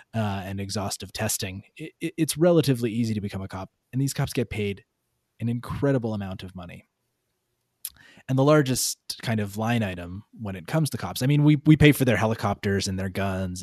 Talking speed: 195 wpm